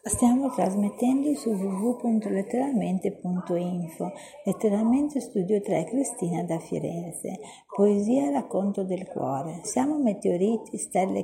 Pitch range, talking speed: 185-245 Hz, 90 wpm